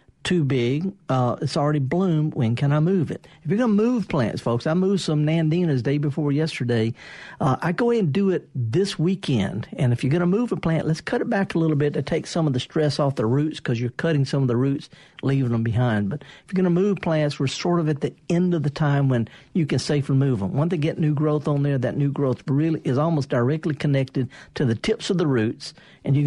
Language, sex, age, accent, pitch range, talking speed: English, male, 50-69, American, 130-170 Hz, 250 wpm